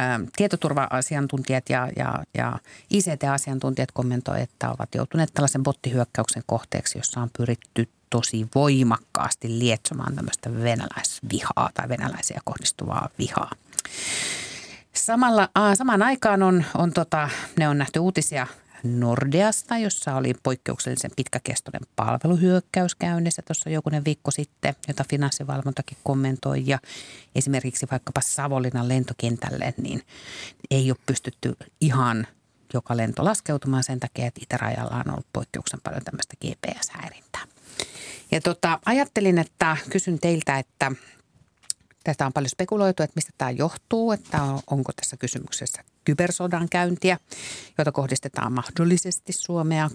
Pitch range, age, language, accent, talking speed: 130-170 Hz, 50-69, Finnish, native, 115 wpm